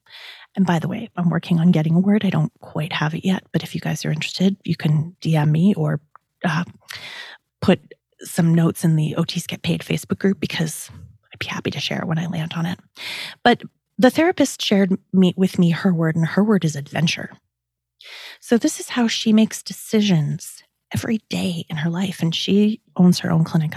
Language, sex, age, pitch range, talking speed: English, female, 30-49, 165-215 Hz, 200 wpm